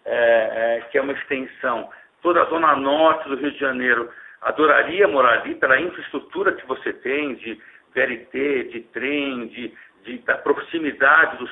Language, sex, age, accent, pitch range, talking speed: Portuguese, male, 60-79, Brazilian, 115-160 Hz, 145 wpm